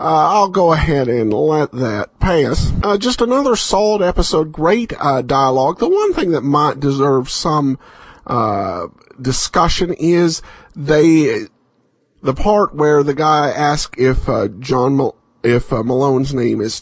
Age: 50-69